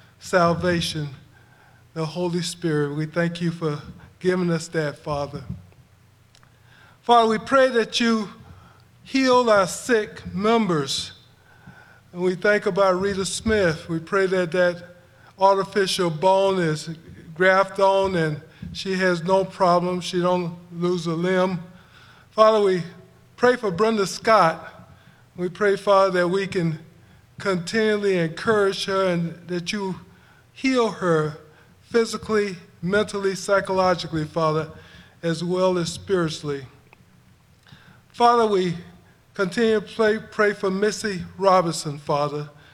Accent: American